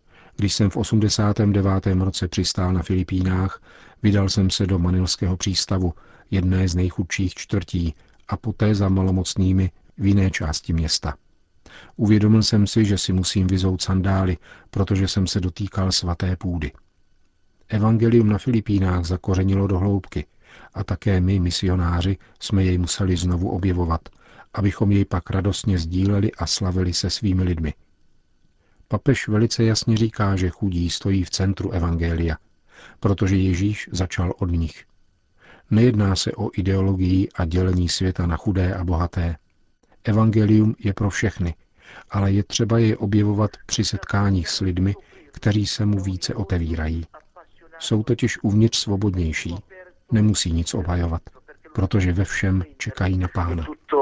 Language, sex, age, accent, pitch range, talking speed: Czech, male, 50-69, native, 90-105 Hz, 135 wpm